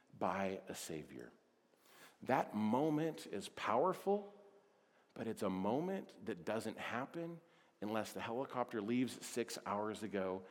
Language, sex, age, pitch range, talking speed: English, male, 40-59, 105-145 Hz, 120 wpm